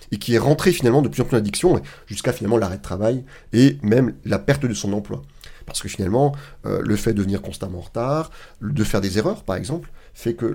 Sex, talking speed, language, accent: male, 235 wpm, French, French